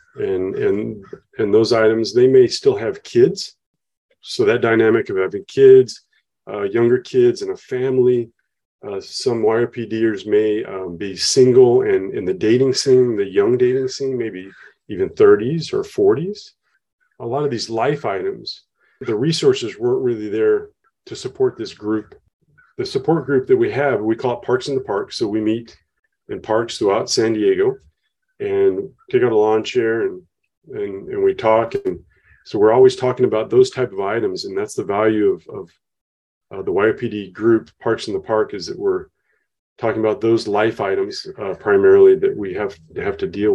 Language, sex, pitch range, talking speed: English, male, 365-400 Hz, 180 wpm